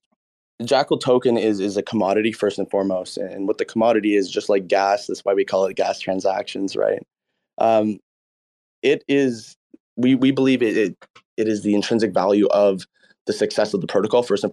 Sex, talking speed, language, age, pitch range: male, 190 wpm, English, 20-39, 100-115 Hz